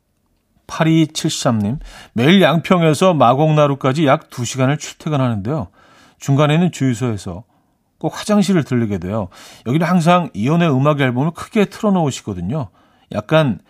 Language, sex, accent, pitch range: Korean, male, native, 105-155 Hz